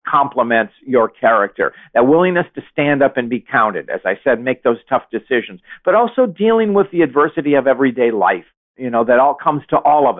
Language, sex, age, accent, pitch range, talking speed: English, male, 50-69, American, 130-170 Hz, 205 wpm